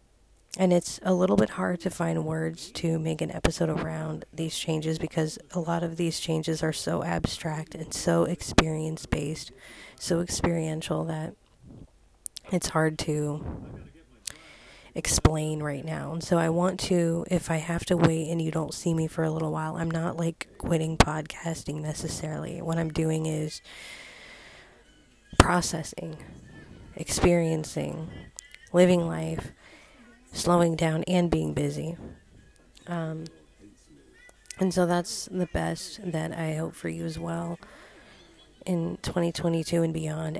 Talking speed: 135 wpm